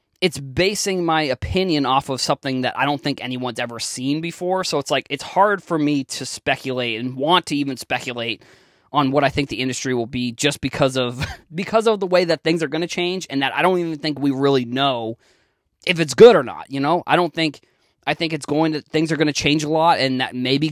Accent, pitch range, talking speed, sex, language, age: American, 130-175 Hz, 240 wpm, male, English, 20-39